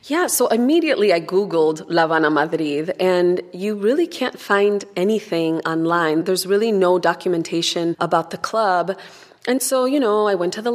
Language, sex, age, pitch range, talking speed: English, female, 20-39, 175-210 Hz, 170 wpm